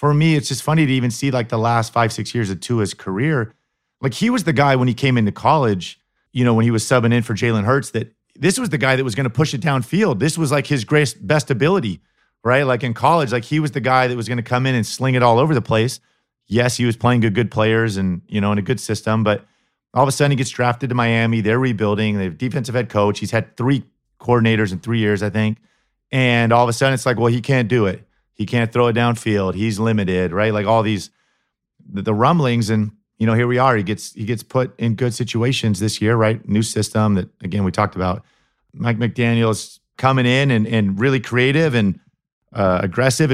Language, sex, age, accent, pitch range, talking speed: English, male, 40-59, American, 110-130 Hz, 250 wpm